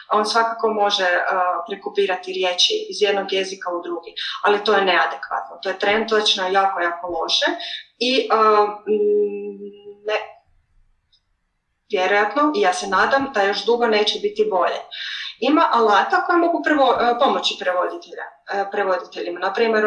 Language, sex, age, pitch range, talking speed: Croatian, female, 20-39, 195-250 Hz, 135 wpm